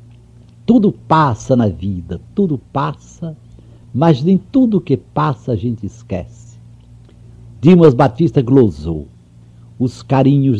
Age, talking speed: 60-79, 110 wpm